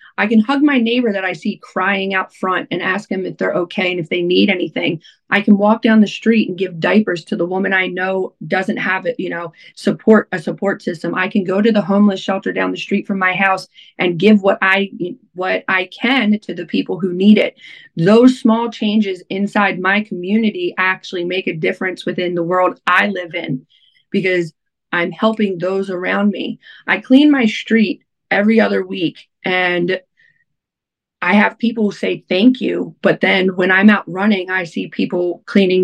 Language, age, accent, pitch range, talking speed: English, 30-49, American, 185-220 Hz, 195 wpm